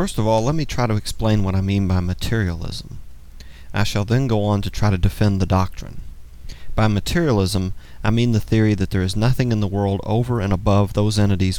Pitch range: 90-110 Hz